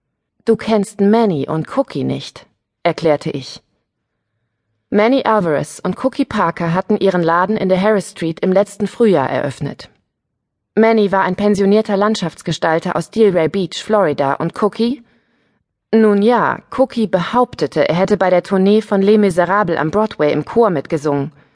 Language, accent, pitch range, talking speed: German, German, 165-220 Hz, 145 wpm